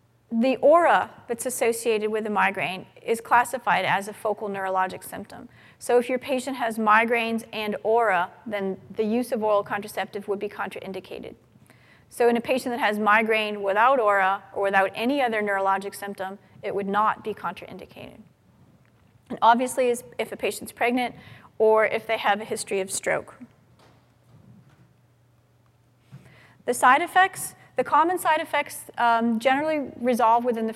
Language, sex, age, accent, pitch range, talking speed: English, female, 30-49, American, 205-250 Hz, 150 wpm